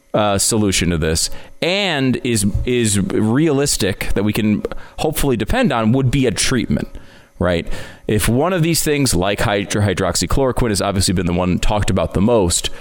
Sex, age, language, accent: male, 30-49, English, American